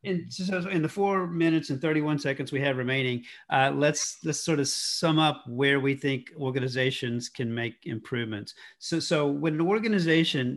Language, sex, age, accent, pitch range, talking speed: English, male, 50-69, American, 130-160 Hz, 175 wpm